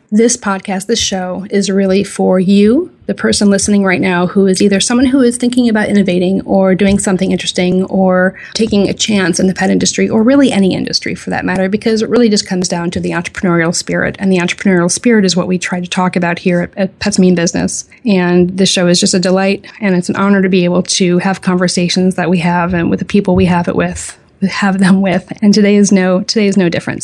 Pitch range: 180-205 Hz